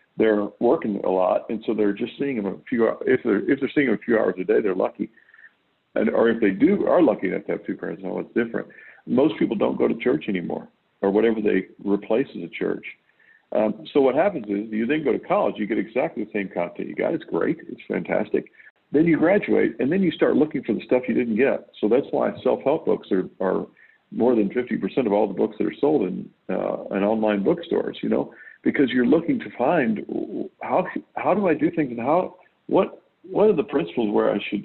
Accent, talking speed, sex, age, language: American, 235 wpm, male, 50-69, English